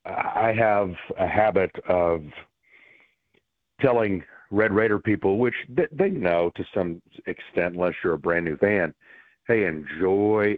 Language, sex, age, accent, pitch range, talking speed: English, male, 40-59, American, 90-105 Hz, 125 wpm